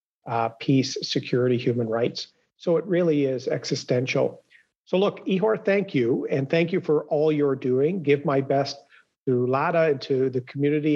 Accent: American